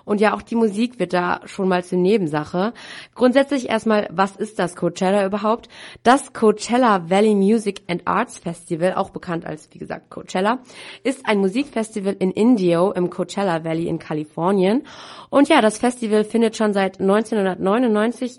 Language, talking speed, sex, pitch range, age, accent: German, 160 wpm, female, 185-220 Hz, 30-49, German